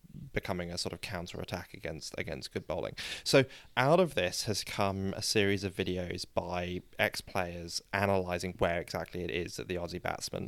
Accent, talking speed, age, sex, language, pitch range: British, 185 wpm, 20-39, male, English, 95-110 Hz